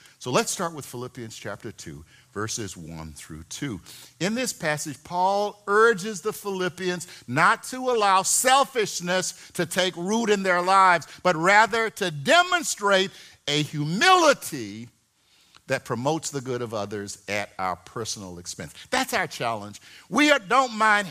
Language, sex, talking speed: English, male, 140 wpm